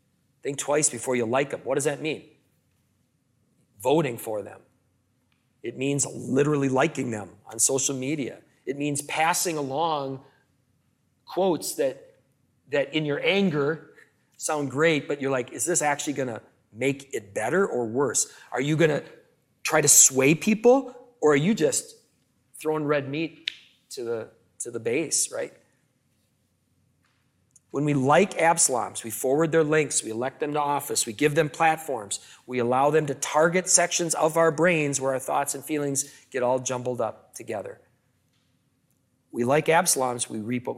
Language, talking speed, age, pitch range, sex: English, 160 wpm, 40-59, 130-165 Hz, male